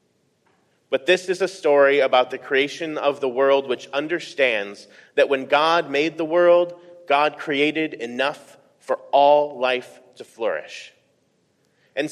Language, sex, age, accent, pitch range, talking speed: English, male, 30-49, American, 135-175 Hz, 140 wpm